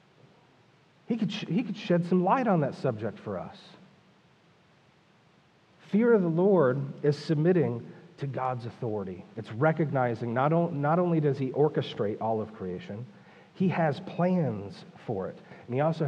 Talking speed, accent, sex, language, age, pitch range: 155 wpm, American, male, English, 40-59, 125-175 Hz